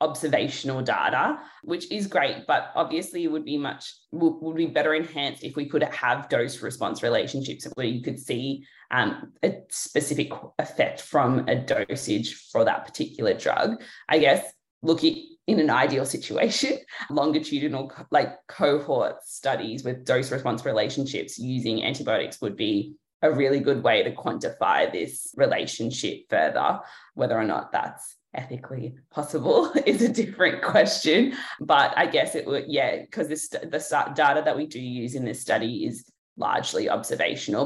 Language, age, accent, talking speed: English, 20-39, Australian, 150 wpm